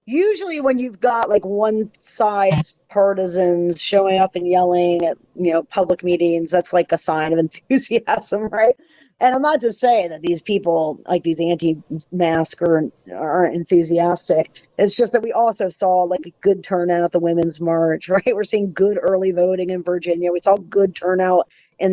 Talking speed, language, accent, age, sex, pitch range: 180 wpm, English, American, 40-59, female, 175-235 Hz